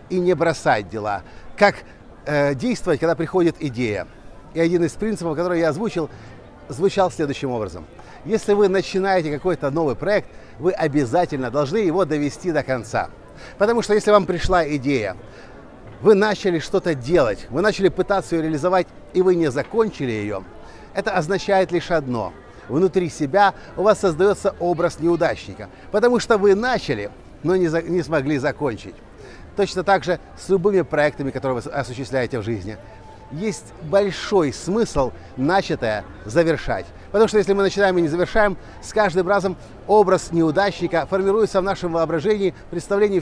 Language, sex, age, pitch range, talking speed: Russian, male, 50-69, 140-195 Hz, 150 wpm